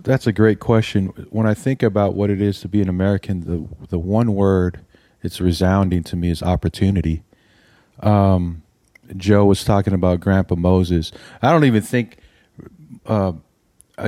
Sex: male